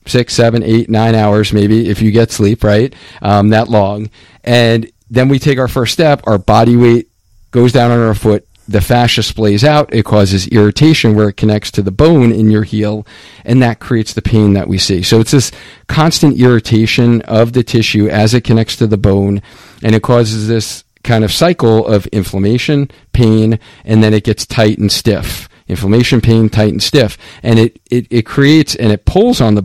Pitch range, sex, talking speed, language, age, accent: 105-125 Hz, male, 200 wpm, English, 40-59, American